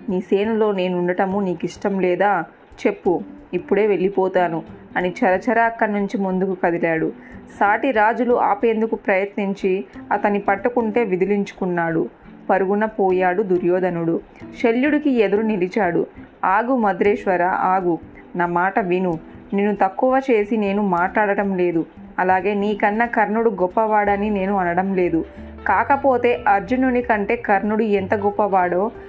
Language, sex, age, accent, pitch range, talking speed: Telugu, female, 20-39, native, 185-220 Hz, 110 wpm